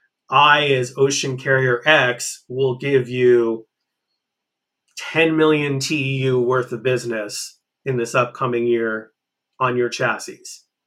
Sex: male